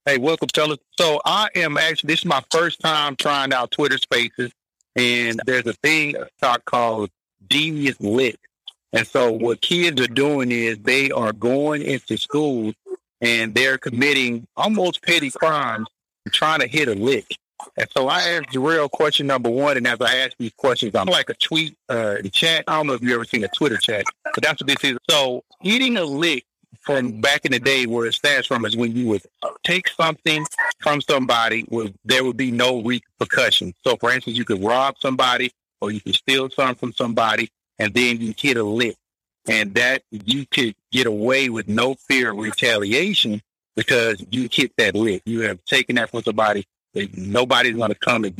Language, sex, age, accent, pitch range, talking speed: English, male, 50-69, American, 115-145 Hz, 195 wpm